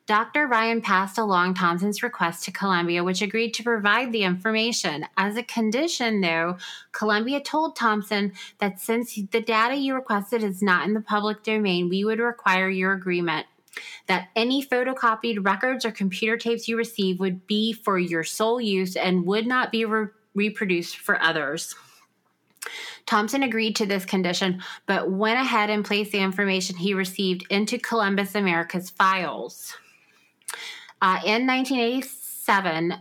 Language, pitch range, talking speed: English, 180-225 Hz, 145 wpm